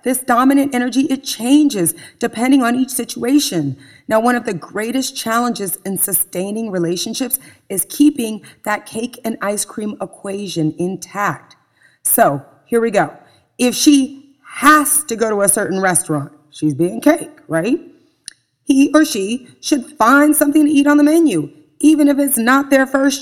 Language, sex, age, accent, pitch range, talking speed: English, female, 30-49, American, 185-280 Hz, 160 wpm